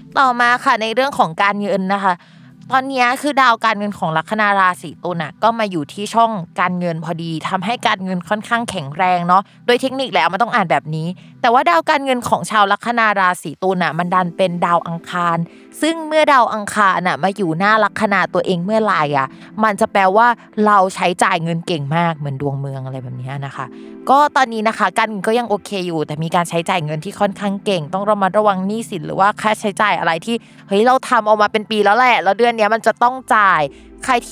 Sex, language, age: female, Thai, 20-39